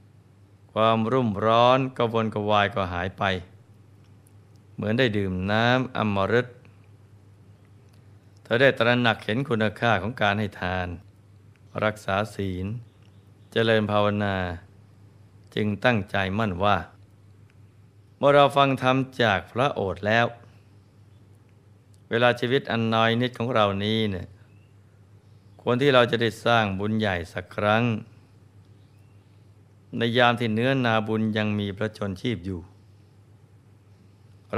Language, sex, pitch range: Thai, male, 100-115 Hz